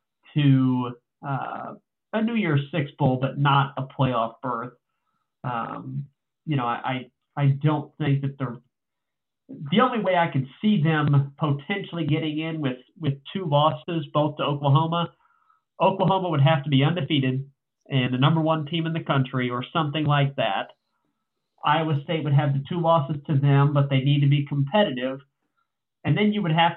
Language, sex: English, male